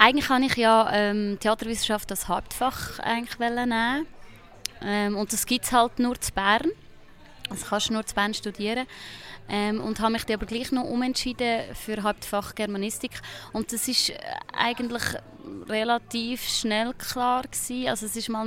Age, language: 20-39, German